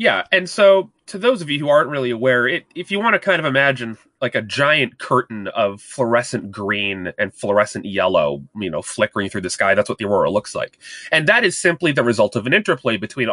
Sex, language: male, English